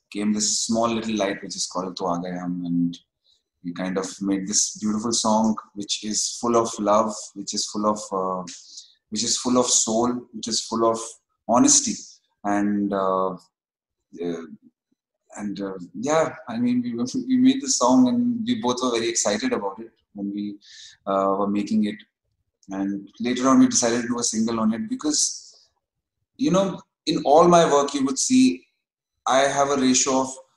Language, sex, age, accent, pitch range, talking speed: English, male, 20-39, Indian, 100-135 Hz, 175 wpm